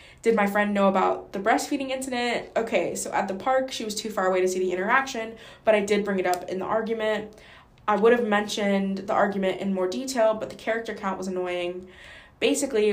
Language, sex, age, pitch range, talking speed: English, female, 20-39, 185-215 Hz, 220 wpm